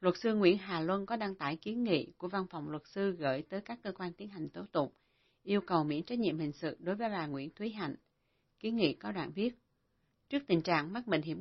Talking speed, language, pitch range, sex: 250 wpm, Vietnamese, 155-195 Hz, female